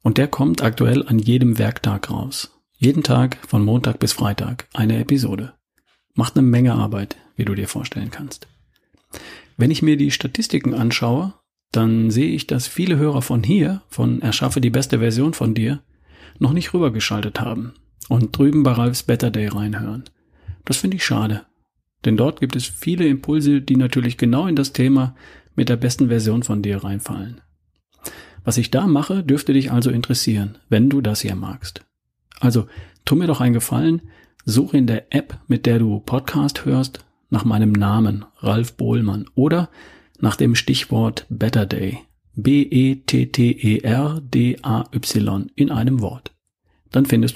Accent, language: German, German